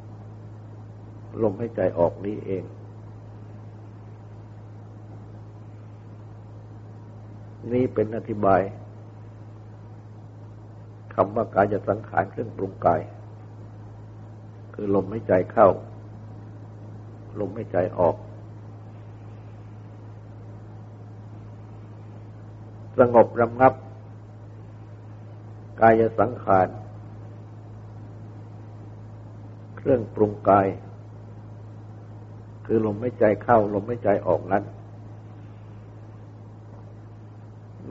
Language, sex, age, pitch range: Thai, male, 60-79, 105-110 Hz